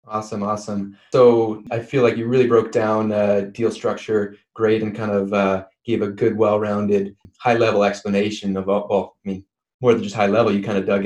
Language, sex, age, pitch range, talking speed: English, male, 20-39, 100-115 Hz, 205 wpm